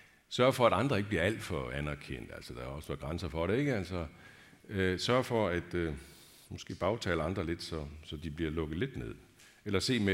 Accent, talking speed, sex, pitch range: native, 220 wpm, male, 95-125 Hz